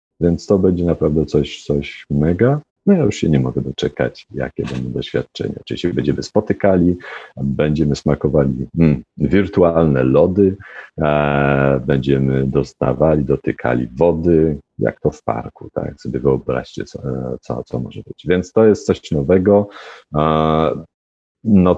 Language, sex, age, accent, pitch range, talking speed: Polish, male, 40-59, native, 70-90 Hz, 135 wpm